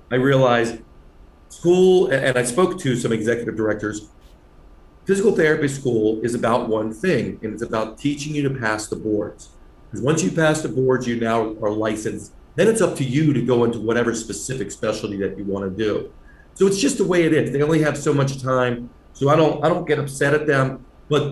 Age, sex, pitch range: 40-59, male, 105-140 Hz